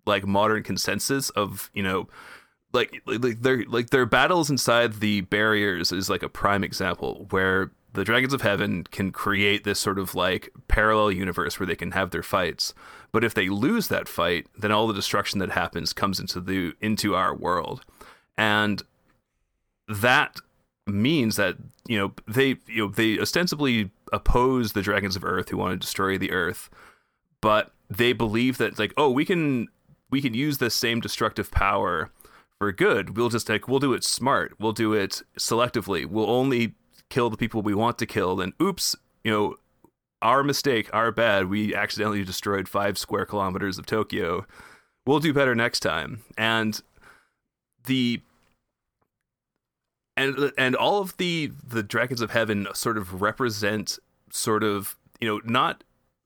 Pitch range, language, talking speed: 100-125 Hz, English, 165 wpm